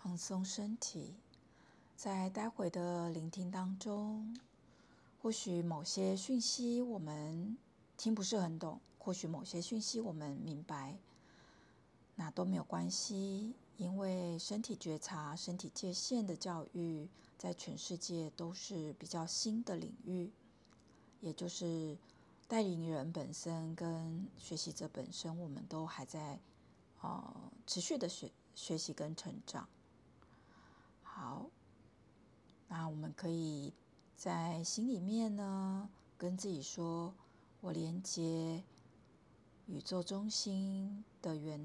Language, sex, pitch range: Chinese, female, 160-200 Hz